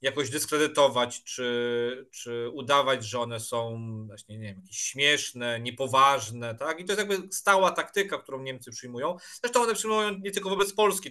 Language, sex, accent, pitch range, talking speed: Polish, male, native, 125-165 Hz, 165 wpm